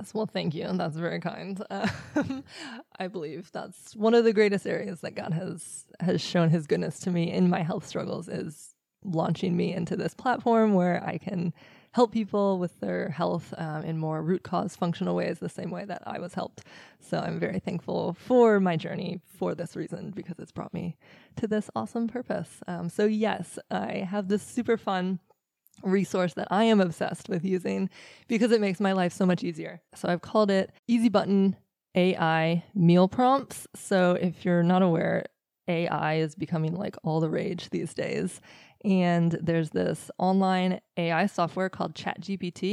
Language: English